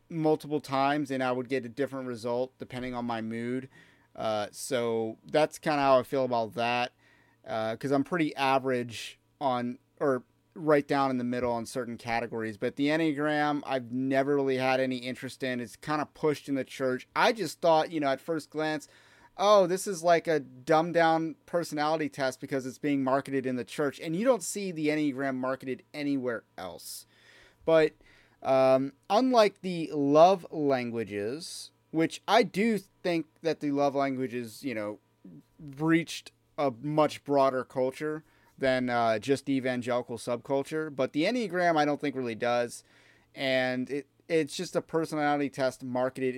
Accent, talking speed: American, 170 wpm